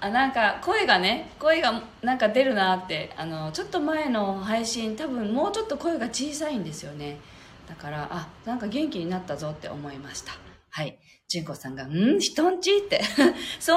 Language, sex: Japanese, female